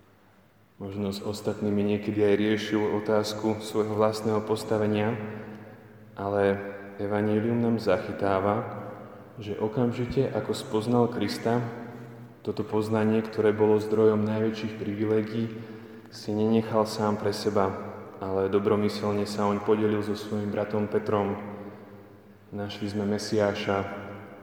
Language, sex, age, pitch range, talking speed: Slovak, male, 20-39, 100-110 Hz, 105 wpm